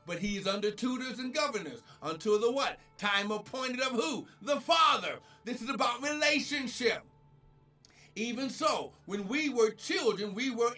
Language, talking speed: English, 155 wpm